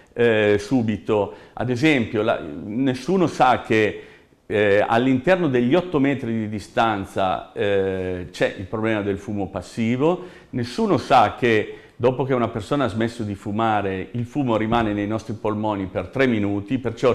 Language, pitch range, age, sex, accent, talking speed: Italian, 100-130 Hz, 50-69, male, native, 150 wpm